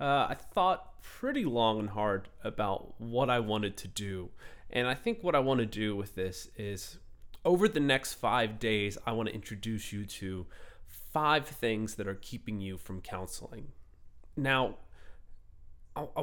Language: English